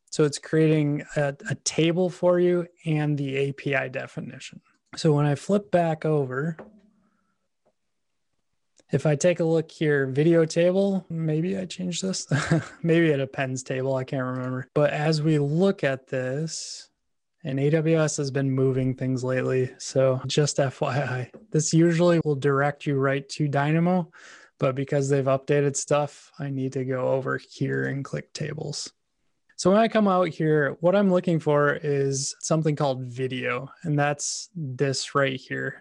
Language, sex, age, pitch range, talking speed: English, male, 20-39, 140-165 Hz, 160 wpm